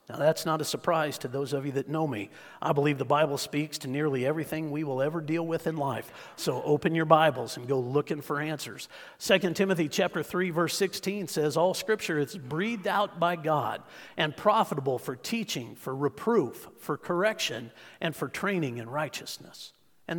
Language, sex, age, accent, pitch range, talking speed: English, male, 50-69, American, 140-180 Hz, 185 wpm